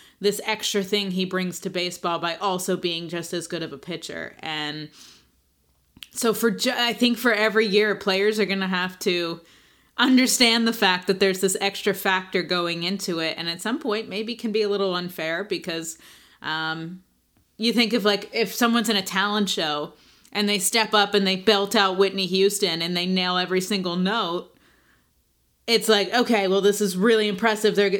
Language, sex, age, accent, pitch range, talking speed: English, female, 20-39, American, 185-220 Hz, 190 wpm